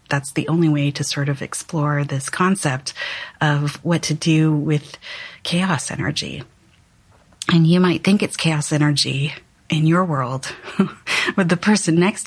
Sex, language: female, English